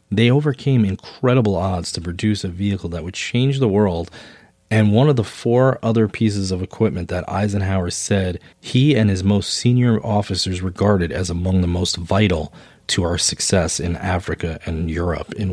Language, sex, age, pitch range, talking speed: English, male, 30-49, 85-105 Hz, 175 wpm